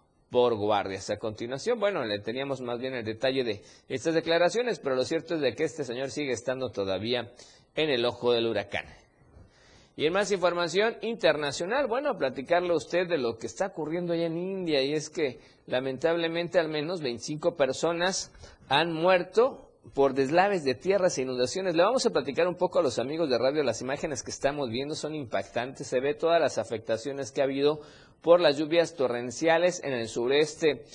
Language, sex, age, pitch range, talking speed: Spanish, male, 50-69, 130-175 Hz, 190 wpm